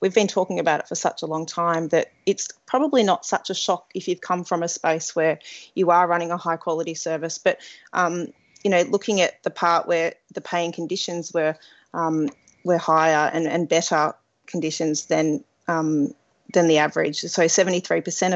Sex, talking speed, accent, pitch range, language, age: female, 190 wpm, Australian, 165-185 Hz, English, 30-49